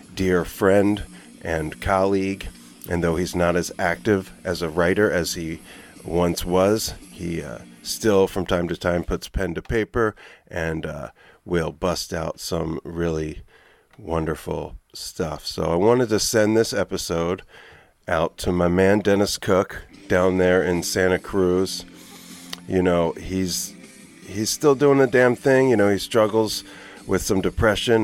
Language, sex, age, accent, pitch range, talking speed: English, male, 40-59, American, 85-100 Hz, 150 wpm